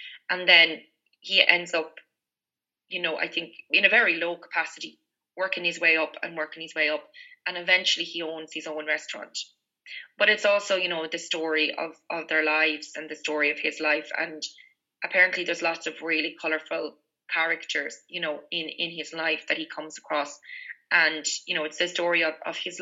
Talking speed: 195 wpm